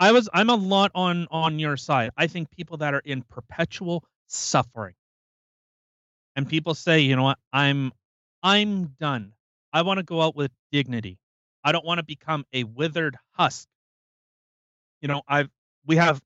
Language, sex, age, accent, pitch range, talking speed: English, male, 30-49, American, 125-155 Hz, 170 wpm